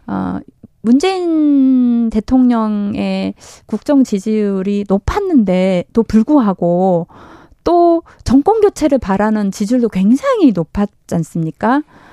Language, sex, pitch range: Korean, female, 200-275 Hz